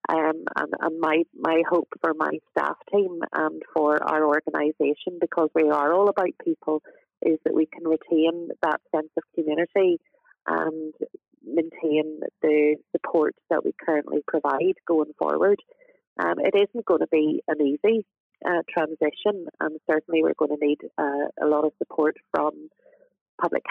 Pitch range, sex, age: 155-185 Hz, female, 30-49